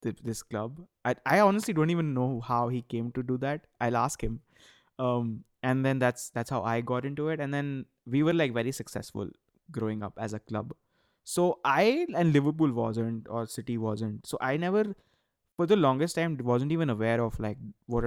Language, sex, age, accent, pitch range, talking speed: English, male, 20-39, Indian, 115-145 Hz, 200 wpm